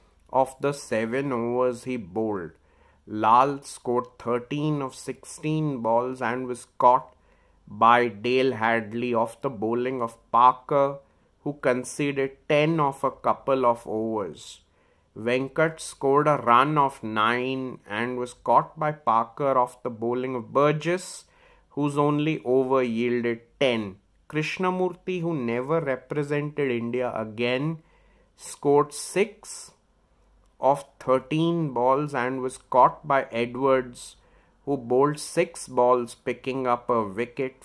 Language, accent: English, Indian